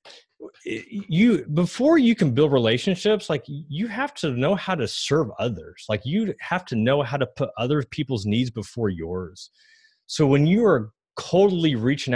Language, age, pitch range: English, 30-49, 115-185 Hz